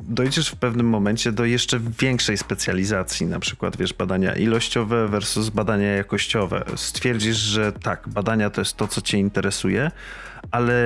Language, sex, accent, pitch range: Polish, male, native, 100-120 Hz